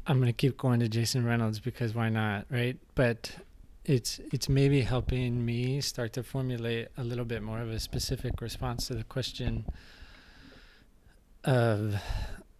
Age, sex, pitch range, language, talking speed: 20-39, male, 115-135 Hz, English, 155 wpm